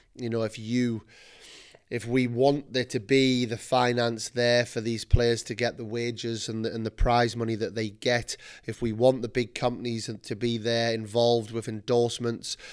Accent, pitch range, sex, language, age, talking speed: British, 110-125 Hz, male, English, 30-49, 190 wpm